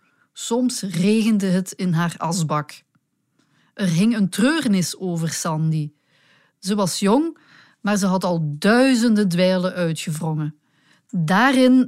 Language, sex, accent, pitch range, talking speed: Dutch, female, Dutch, 170-235 Hz, 115 wpm